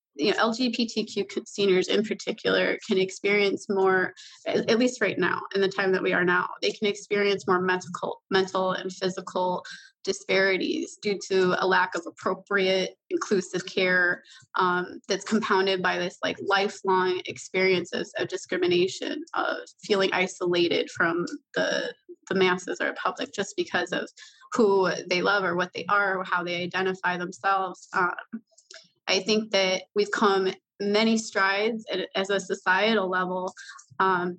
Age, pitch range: 20-39, 185-205 Hz